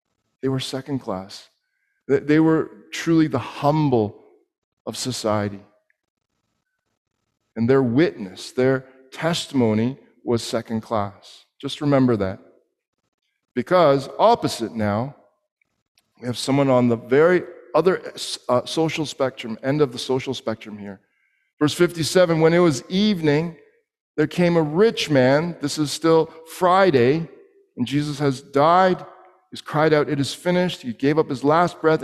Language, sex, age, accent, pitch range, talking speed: English, male, 50-69, American, 130-160 Hz, 135 wpm